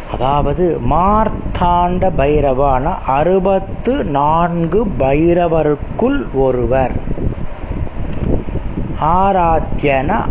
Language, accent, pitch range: Tamil, native, 130-185 Hz